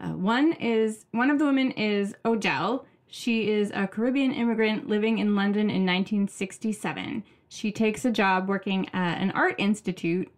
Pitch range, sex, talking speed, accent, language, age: 175-220 Hz, female, 160 wpm, American, English, 20-39